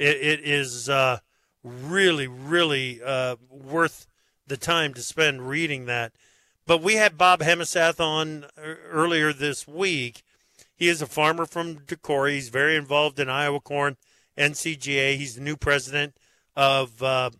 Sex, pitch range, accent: male, 140-175 Hz, American